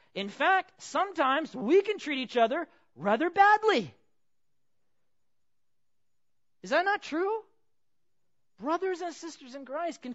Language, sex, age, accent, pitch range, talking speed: English, male, 40-59, American, 170-275 Hz, 120 wpm